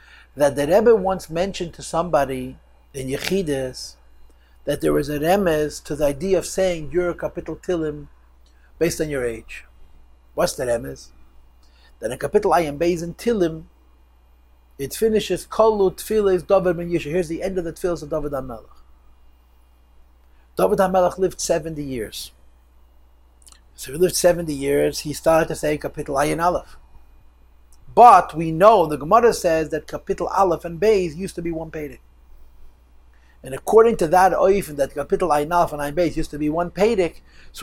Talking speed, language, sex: 155 wpm, English, male